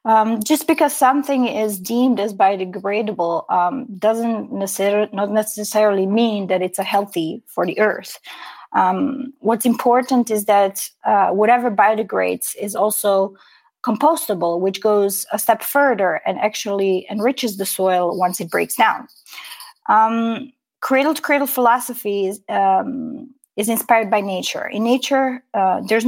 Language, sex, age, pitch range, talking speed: English, female, 20-39, 205-255 Hz, 125 wpm